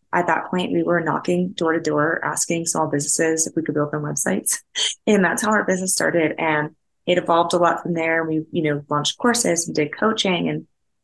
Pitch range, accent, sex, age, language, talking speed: 160-190 Hz, American, female, 20-39, English, 205 wpm